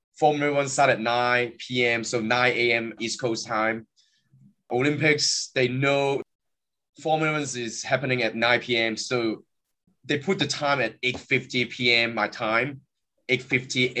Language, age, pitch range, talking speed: English, 20-39, 115-145 Hz, 140 wpm